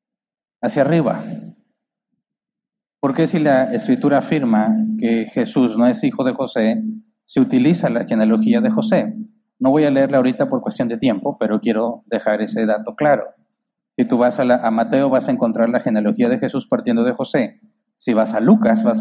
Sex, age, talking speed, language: male, 40-59, 175 wpm, Spanish